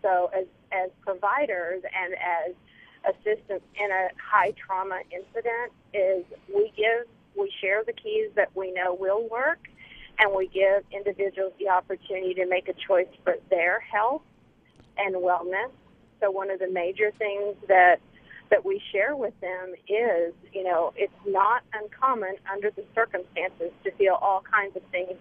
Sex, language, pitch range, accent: female, English, 185-215 Hz, American